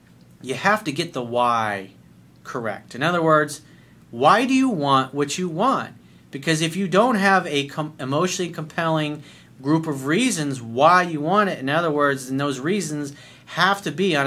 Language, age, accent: English, 40-59, American